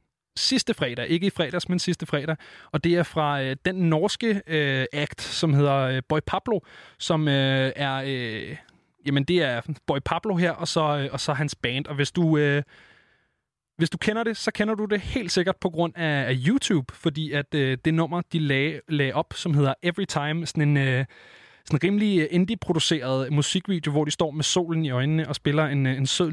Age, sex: 20-39, male